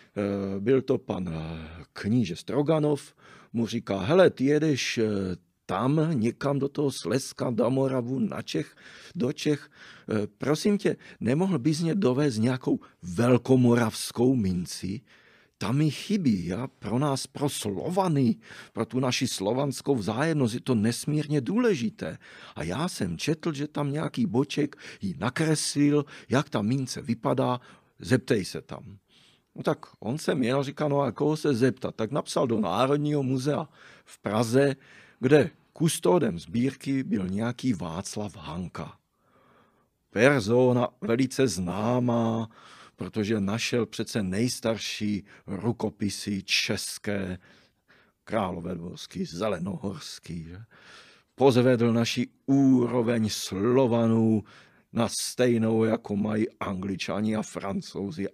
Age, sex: 40-59, male